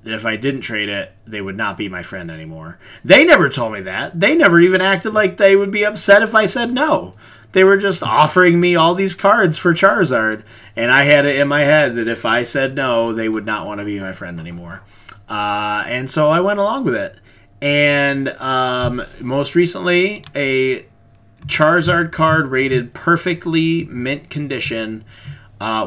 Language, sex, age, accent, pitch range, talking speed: English, male, 30-49, American, 105-150 Hz, 190 wpm